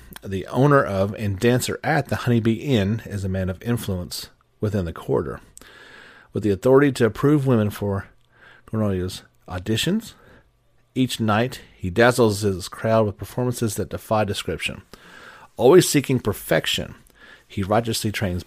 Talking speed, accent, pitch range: 145 wpm, American, 95-120 Hz